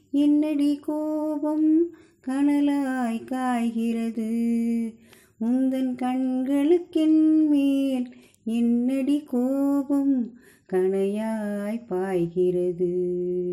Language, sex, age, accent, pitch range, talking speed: Tamil, female, 30-49, native, 215-275 Hz, 45 wpm